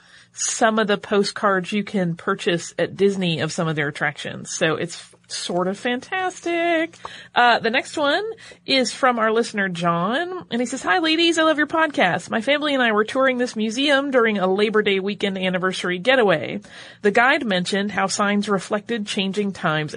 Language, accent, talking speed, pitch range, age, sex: English, American, 180 wpm, 180-240 Hz, 30-49, female